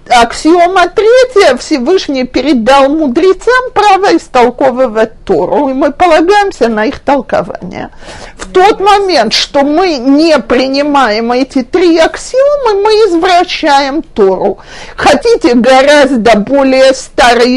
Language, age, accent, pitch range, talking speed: Russian, 50-69, native, 250-345 Hz, 105 wpm